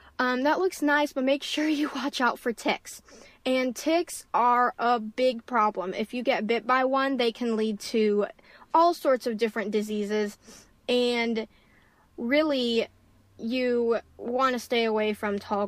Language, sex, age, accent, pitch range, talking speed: English, female, 10-29, American, 220-265 Hz, 160 wpm